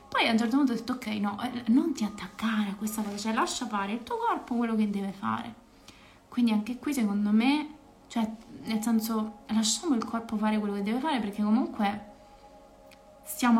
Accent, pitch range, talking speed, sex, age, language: native, 200-235 Hz, 195 wpm, female, 20-39, Italian